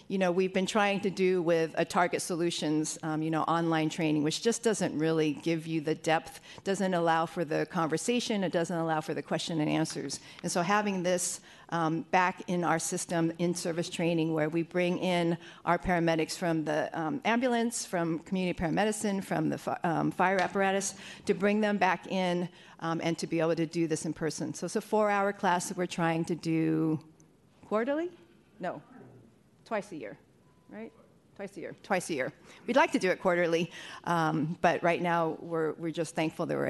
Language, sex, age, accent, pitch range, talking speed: English, female, 50-69, American, 160-190 Hz, 195 wpm